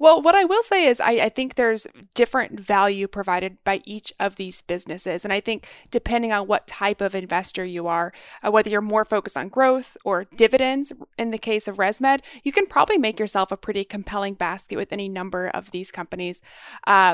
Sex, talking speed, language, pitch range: female, 205 wpm, English, 190-235 Hz